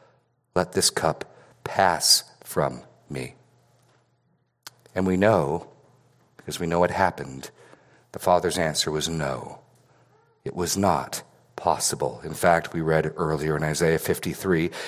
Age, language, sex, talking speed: 50-69, English, male, 125 wpm